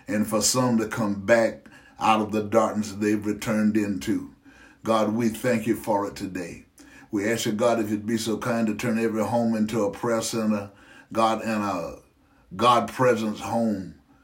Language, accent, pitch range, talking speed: English, American, 105-115 Hz, 175 wpm